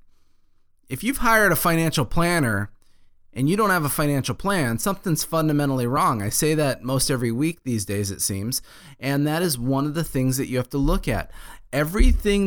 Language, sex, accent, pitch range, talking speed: English, male, American, 125-155 Hz, 195 wpm